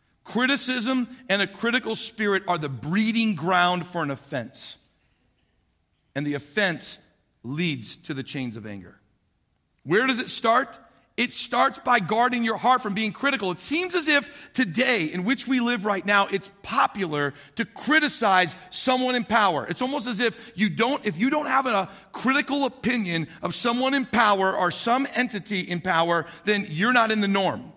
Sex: male